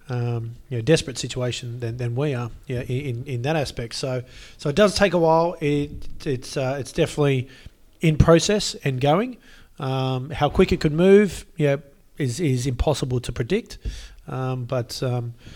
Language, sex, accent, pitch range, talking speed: English, male, Australian, 125-145 Hz, 180 wpm